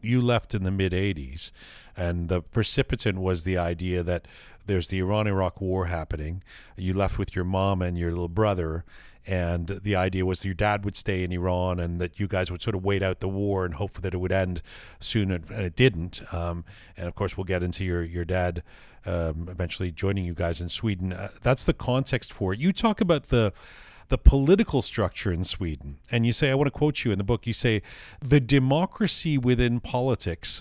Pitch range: 95-130 Hz